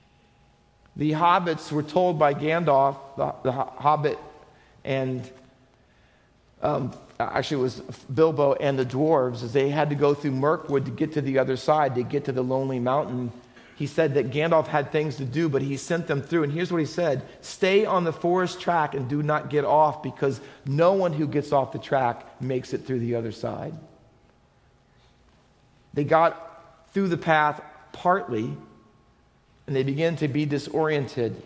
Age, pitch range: 40-59, 135-175 Hz